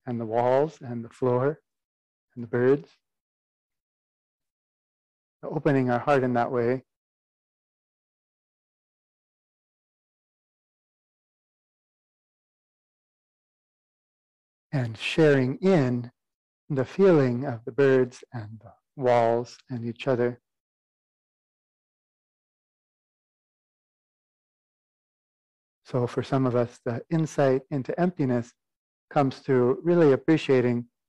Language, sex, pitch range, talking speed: English, male, 120-140 Hz, 80 wpm